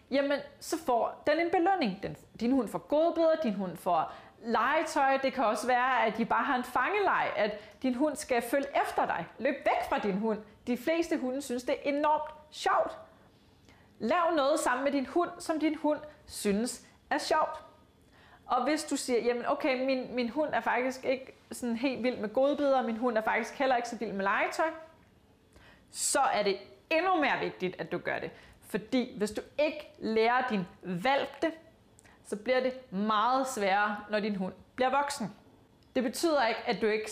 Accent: native